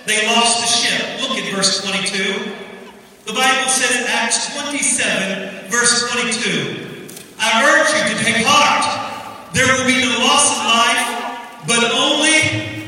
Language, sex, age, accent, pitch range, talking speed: English, male, 40-59, American, 210-260 Hz, 145 wpm